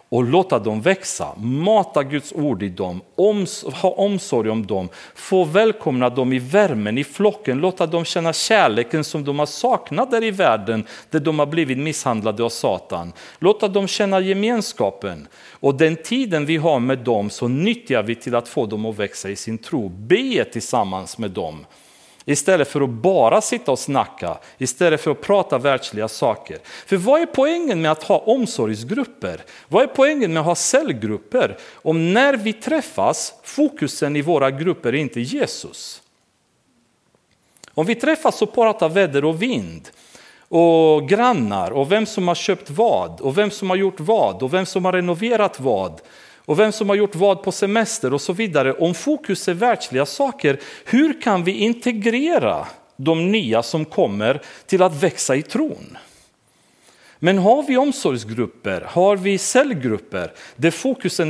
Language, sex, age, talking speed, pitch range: Swedish, male, 40-59, 165 wpm, 135-215 Hz